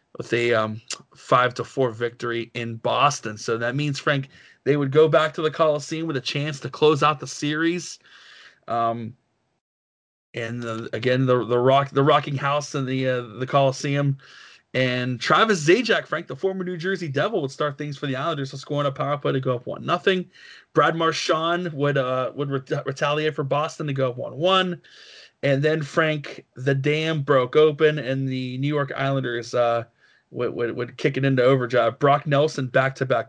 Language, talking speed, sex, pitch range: English, 185 wpm, male, 125-150 Hz